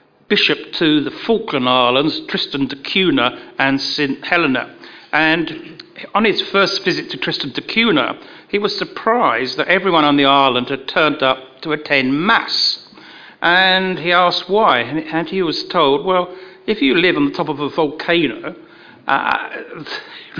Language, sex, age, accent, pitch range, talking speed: English, male, 60-79, British, 140-195 Hz, 155 wpm